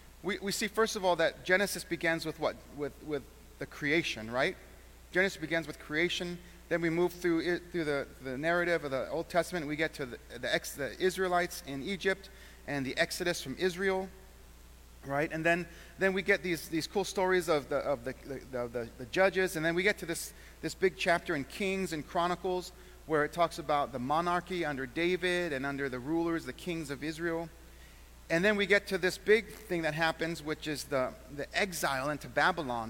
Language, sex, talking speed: English, male, 190 wpm